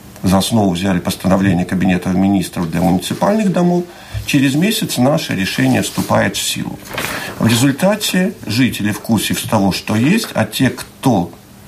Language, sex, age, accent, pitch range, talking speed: Russian, male, 50-69, native, 100-140 Hz, 140 wpm